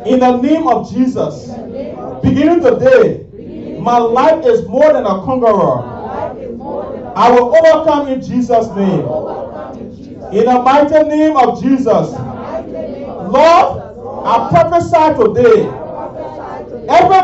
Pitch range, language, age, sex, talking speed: 250-320 Hz, English, 40-59, male, 110 wpm